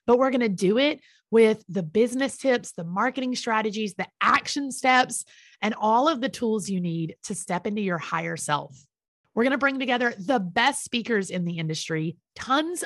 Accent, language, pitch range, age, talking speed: American, English, 170-235 Hz, 30-49, 190 wpm